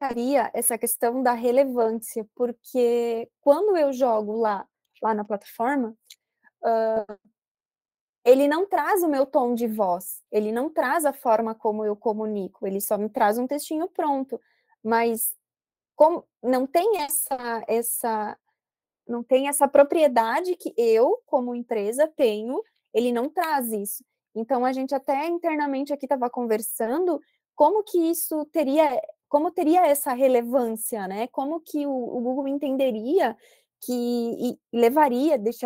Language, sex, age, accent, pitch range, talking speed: Portuguese, female, 20-39, Brazilian, 225-285 Hz, 130 wpm